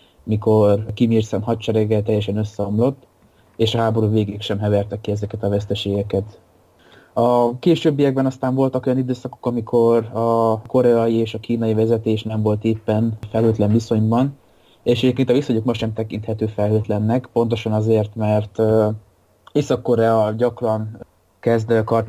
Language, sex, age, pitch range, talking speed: Hungarian, male, 20-39, 105-115 Hz, 135 wpm